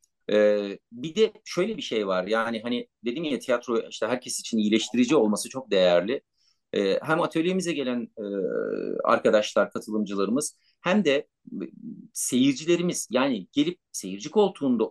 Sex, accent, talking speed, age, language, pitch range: male, native, 120 wpm, 50-69, Turkish, 105-175 Hz